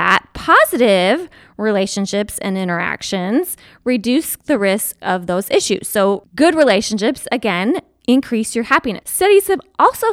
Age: 20-39